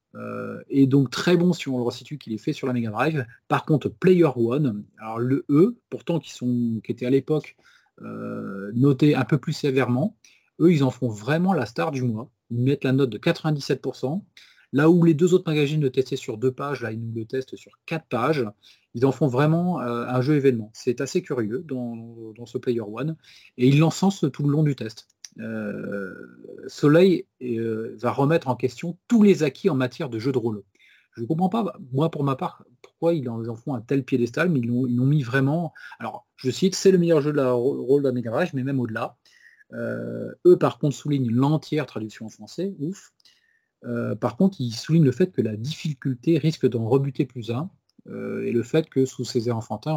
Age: 30-49